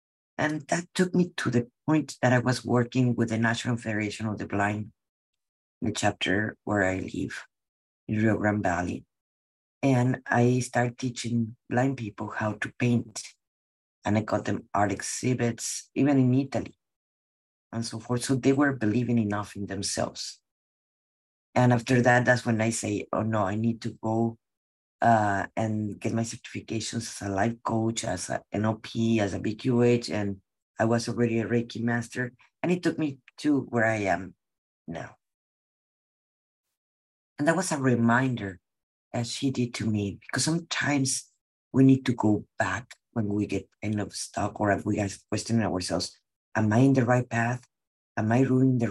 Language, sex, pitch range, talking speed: English, female, 105-125 Hz, 170 wpm